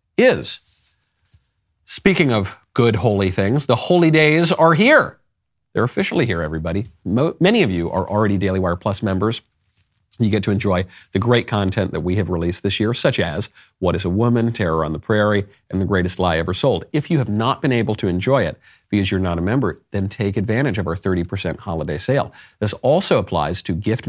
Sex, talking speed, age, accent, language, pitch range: male, 200 wpm, 50-69, American, English, 90-125 Hz